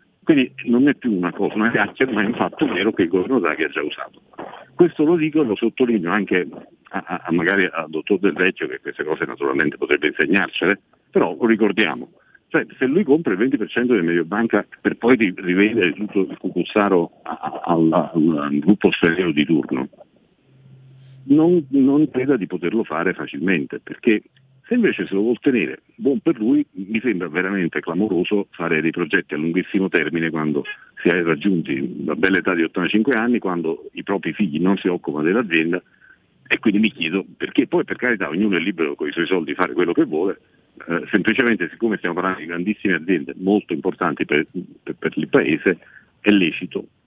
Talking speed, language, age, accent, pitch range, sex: 185 wpm, Italian, 50-69, native, 85-135 Hz, male